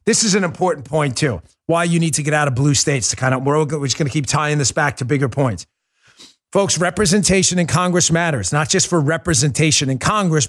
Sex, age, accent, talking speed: male, 40-59, American, 230 wpm